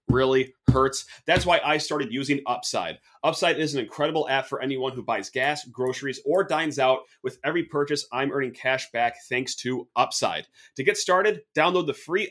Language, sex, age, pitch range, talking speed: English, male, 30-49, 130-155 Hz, 185 wpm